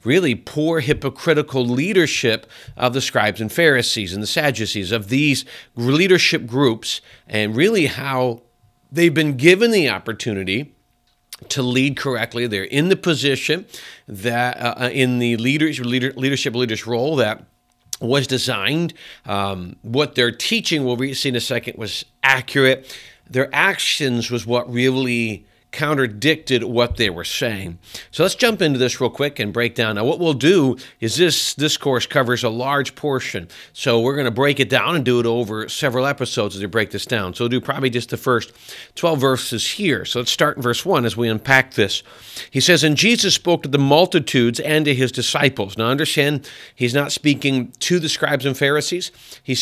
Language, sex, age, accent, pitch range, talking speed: English, male, 40-59, American, 120-145 Hz, 180 wpm